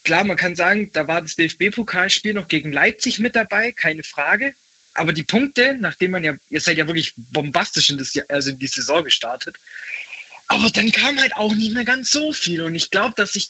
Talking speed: 200 wpm